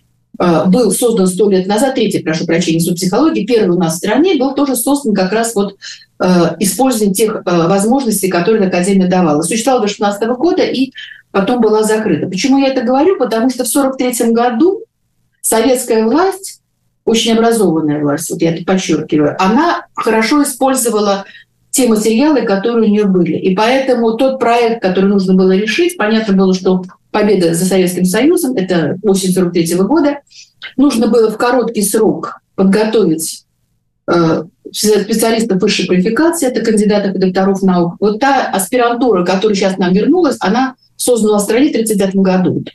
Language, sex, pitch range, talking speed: Russian, female, 185-250 Hz, 155 wpm